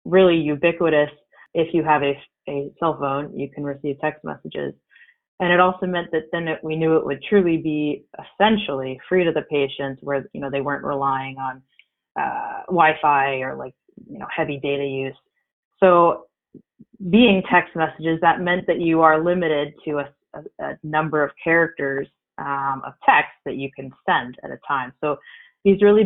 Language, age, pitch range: English, 20-39, 145-175 Hz